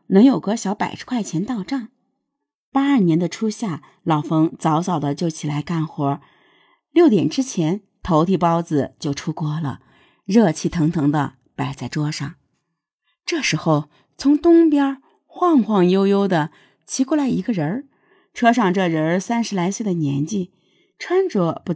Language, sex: Chinese, female